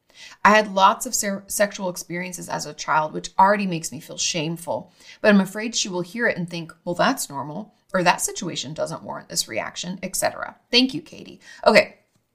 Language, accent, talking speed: English, American, 195 wpm